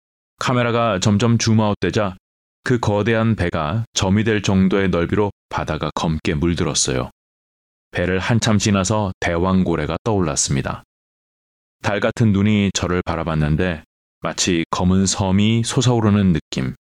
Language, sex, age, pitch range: Korean, male, 30-49, 85-110 Hz